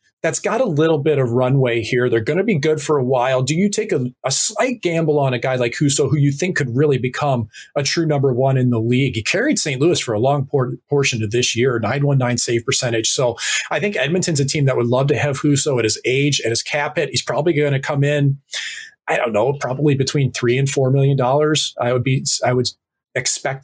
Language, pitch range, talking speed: English, 125-150 Hz, 245 wpm